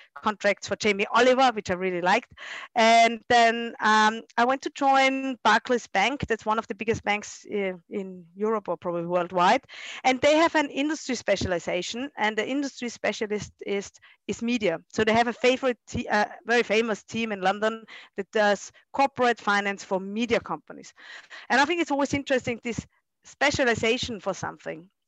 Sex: female